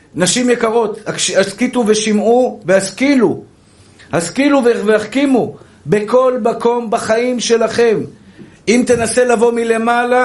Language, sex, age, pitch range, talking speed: Hebrew, male, 50-69, 195-240 Hz, 90 wpm